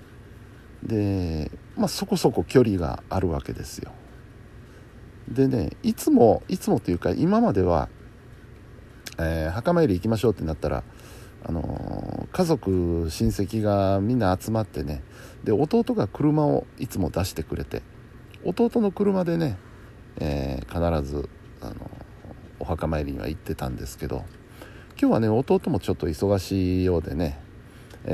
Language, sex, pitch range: Japanese, male, 85-125 Hz